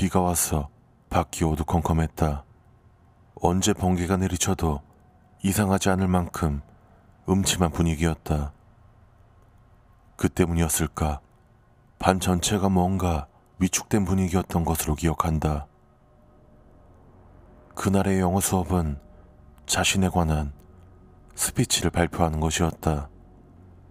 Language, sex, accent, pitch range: Korean, male, native, 80-95 Hz